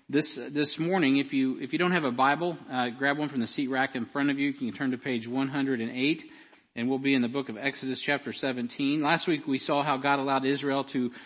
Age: 50-69